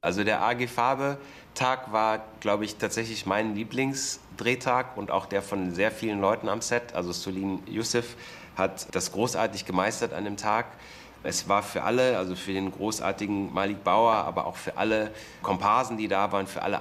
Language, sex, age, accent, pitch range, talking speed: German, male, 30-49, German, 95-110 Hz, 180 wpm